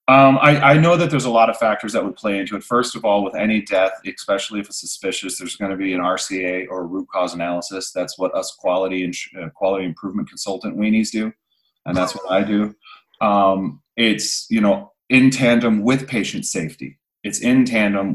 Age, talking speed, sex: 30-49, 200 wpm, male